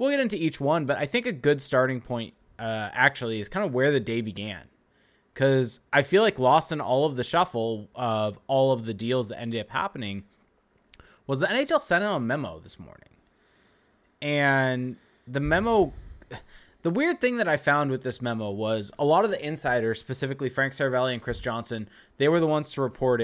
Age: 20-39